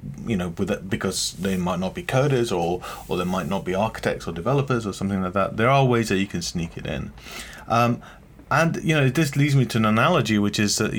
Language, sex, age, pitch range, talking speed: English, male, 30-49, 95-120 Hz, 245 wpm